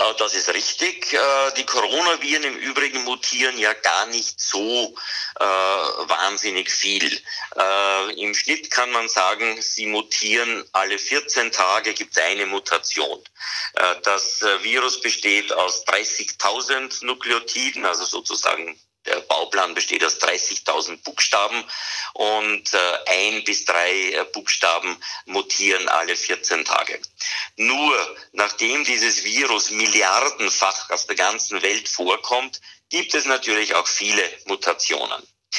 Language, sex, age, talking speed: German, male, 50-69, 115 wpm